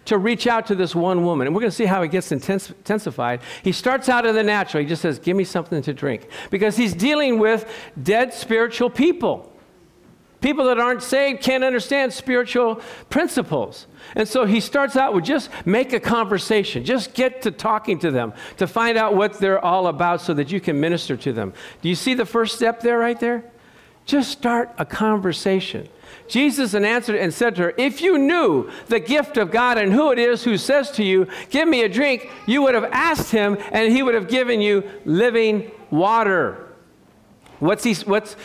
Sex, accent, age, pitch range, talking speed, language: male, American, 50-69, 180-245 Hz, 200 wpm, English